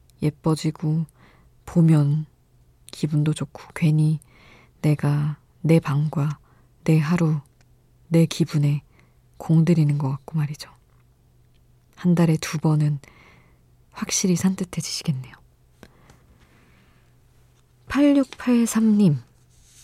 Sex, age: female, 20-39